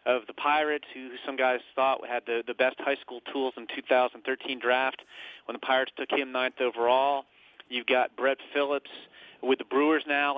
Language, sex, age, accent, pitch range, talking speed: English, male, 30-49, American, 125-145 Hz, 190 wpm